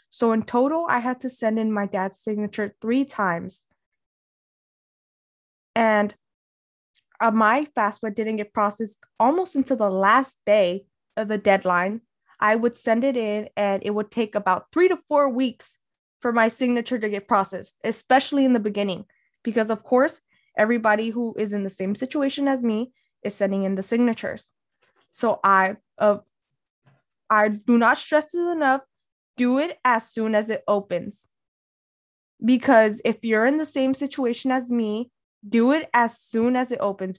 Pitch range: 205-255 Hz